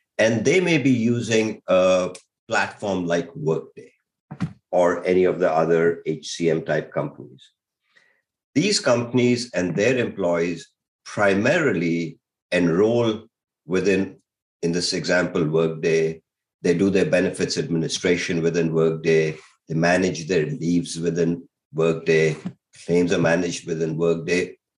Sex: male